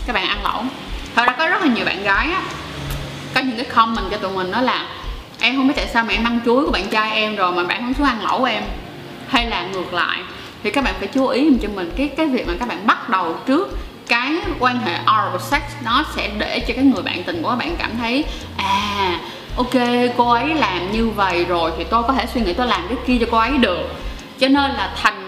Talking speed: 260 wpm